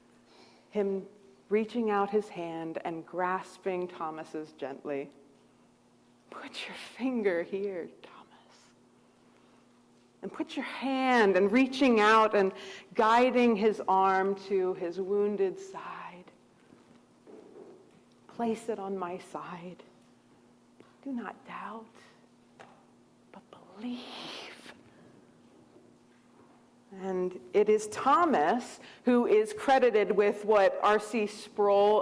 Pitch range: 180-220 Hz